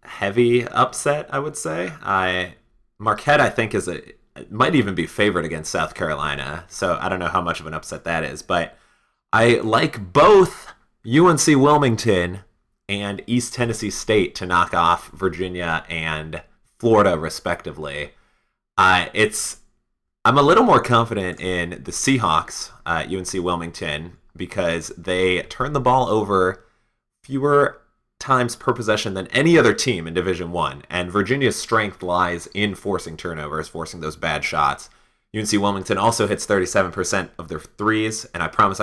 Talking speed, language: 150 wpm, English